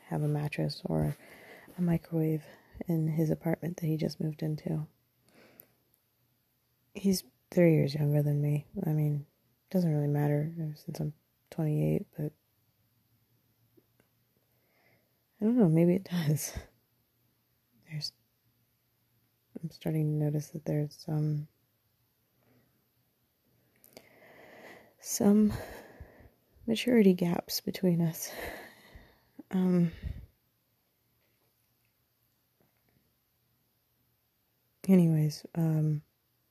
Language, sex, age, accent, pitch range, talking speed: English, female, 20-39, American, 150-180 Hz, 90 wpm